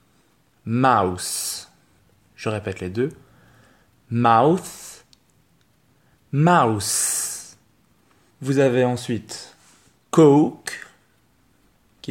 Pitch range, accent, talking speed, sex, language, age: 110-145 Hz, French, 60 wpm, male, French, 20-39